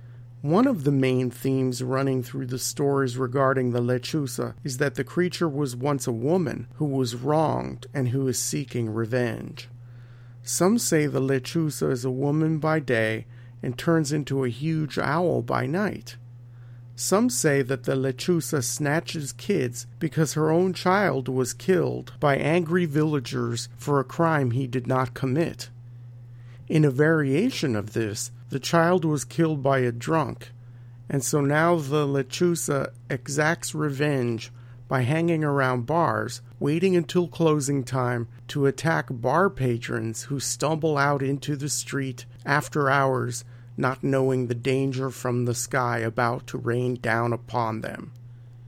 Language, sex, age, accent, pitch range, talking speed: English, male, 40-59, American, 120-150 Hz, 150 wpm